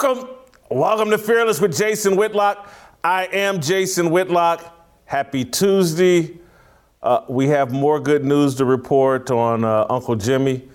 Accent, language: American, English